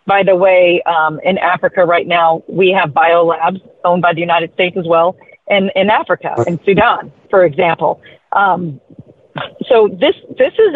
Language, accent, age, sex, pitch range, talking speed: English, American, 40-59, female, 170-205 Hz, 165 wpm